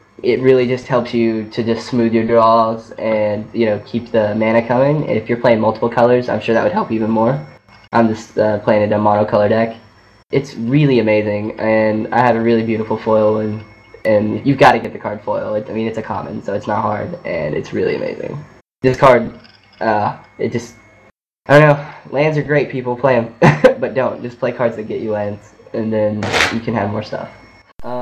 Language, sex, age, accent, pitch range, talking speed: English, male, 10-29, American, 110-125 Hz, 215 wpm